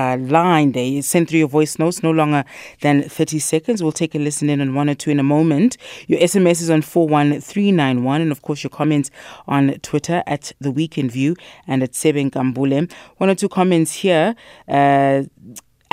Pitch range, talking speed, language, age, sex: 140-170 Hz, 210 wpm, English, 30-49, female